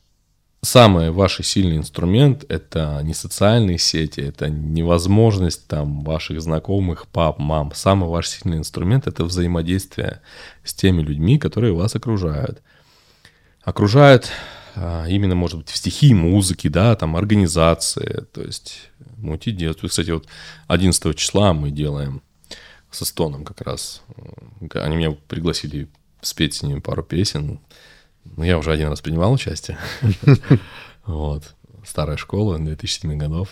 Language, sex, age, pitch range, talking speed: Russian, male, 20-39, 80-110 Hz, 125 wpm